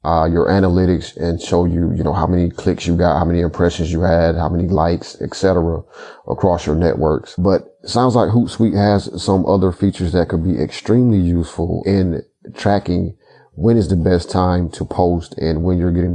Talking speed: 195 wpm